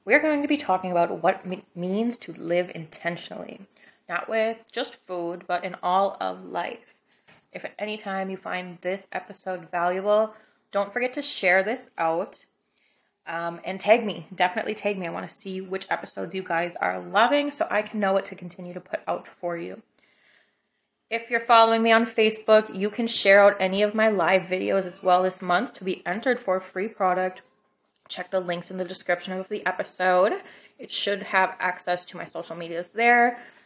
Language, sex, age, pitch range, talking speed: English, female, 20-39, 180-220 Hz, 195 wpm